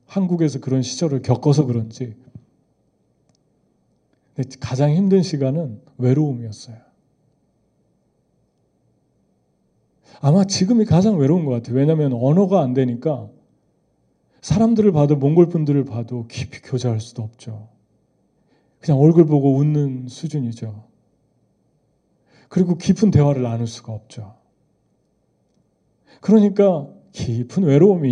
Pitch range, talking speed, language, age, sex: 125-170 Hz, 90 wpm, English, 40-59, male